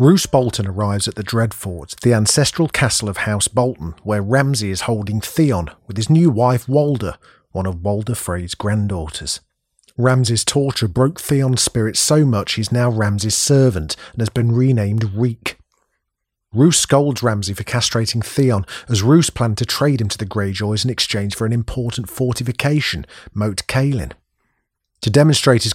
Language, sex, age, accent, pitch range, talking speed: English, male, 40-59, British, 105-130 Hz, 160 wpm